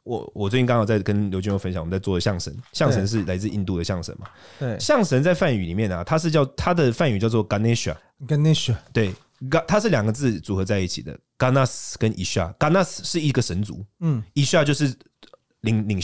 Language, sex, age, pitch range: Chinese, male, 20-39, 95-145 Hz